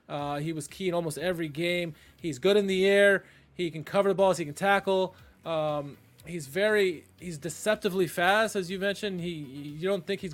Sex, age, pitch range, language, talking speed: male, 20-39, 145-185 Hz, English, 205 wpm